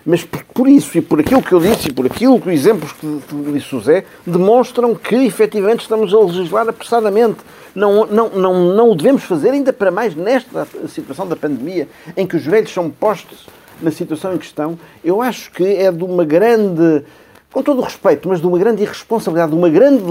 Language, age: Portuguese, 50-69